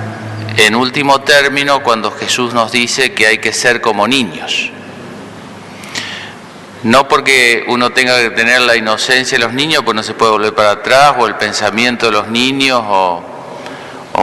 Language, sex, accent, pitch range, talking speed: Spanish, male, Argentinian, 110-140 Hz, 165 wpm